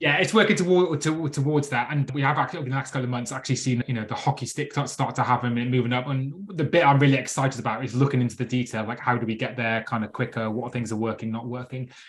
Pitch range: 120-145 Hz